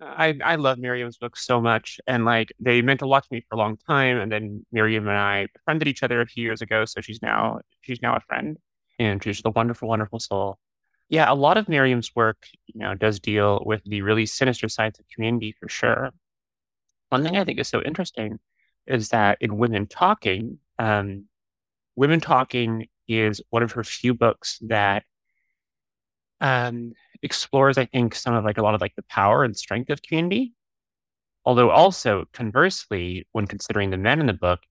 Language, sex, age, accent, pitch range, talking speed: English, male, 30-49, American, 105-135 Hz, 195 wpm